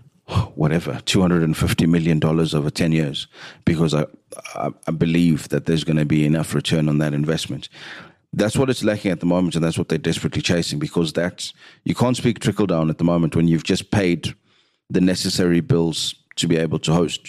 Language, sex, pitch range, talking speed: English, male, 80-95 Hz, 200 wpm